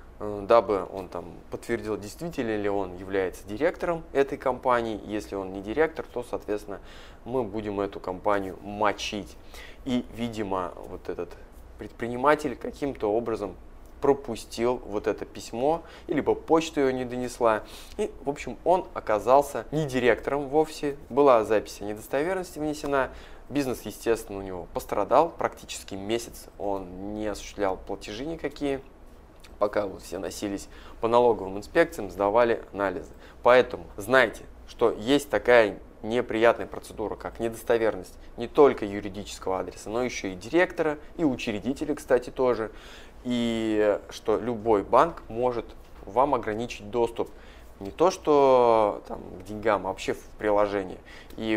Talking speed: 130 wpm